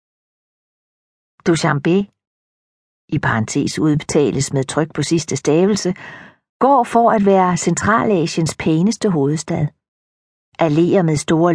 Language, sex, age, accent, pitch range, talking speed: Danish, female, 50-69, native, 155-195 Hz, 100 wpm